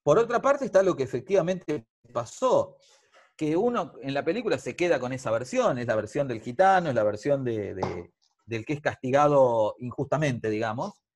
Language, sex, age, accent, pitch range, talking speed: Spanish, male, 40-59, Argentinian, 115-165 Hz, 185 wpm